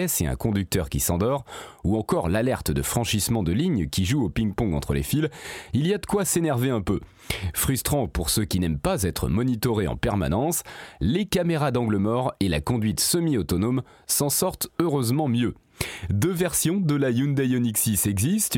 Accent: French